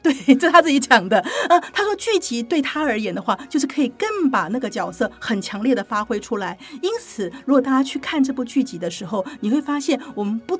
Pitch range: 215-285 Hz